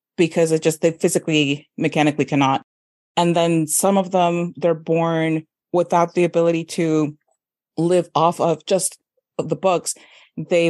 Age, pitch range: 30-49, 155-190 Hz